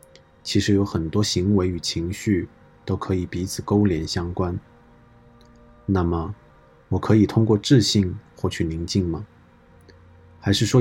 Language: Chinese